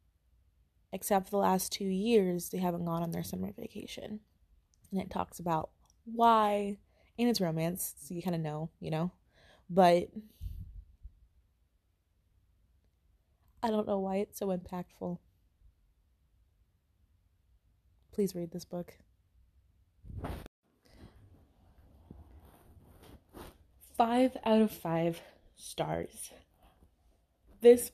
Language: English